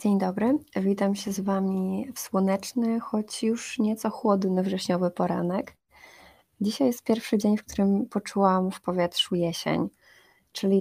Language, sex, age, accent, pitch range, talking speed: Polish, female, 20-39, native, 175-200 Hz, 140 wpm